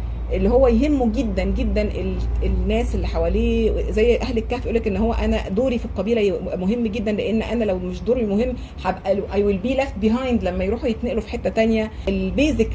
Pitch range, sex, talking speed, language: 195-250 Hz, female, 190 wpm, Arabic